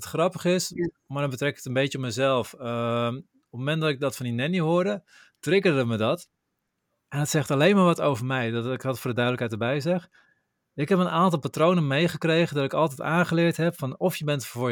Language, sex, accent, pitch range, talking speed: Dutch, male, Dutch, 125-160 Hz, 230 wpm